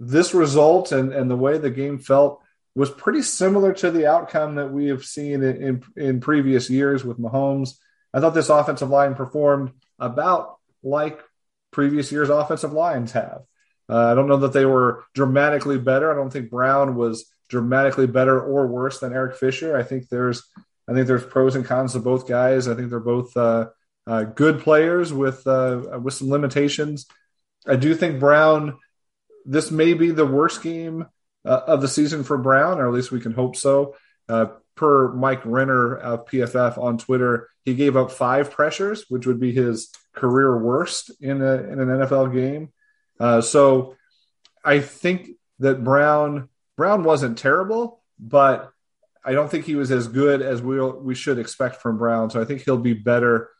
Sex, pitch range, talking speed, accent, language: male, 125-150 Hz, 180 wpm, American, English